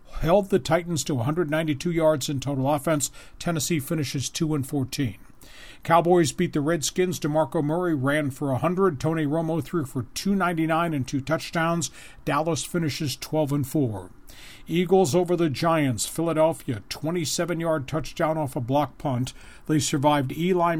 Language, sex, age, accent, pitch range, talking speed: English, male, 50-69, American, 140-165 Hz, 145 wpm